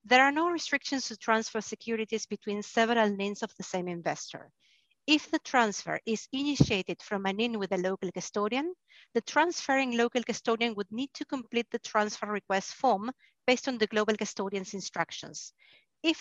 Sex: female